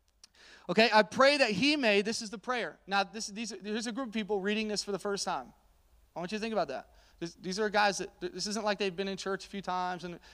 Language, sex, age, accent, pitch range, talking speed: English, male, 30-49, American, 185-235 Hz, 275 wpm